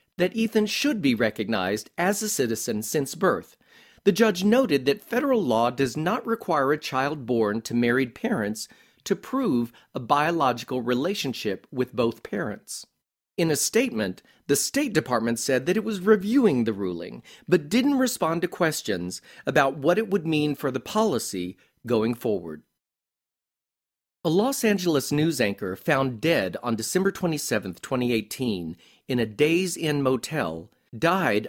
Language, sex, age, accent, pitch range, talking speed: English, male, 40-59, American, 120-190 Hz, 150 wpm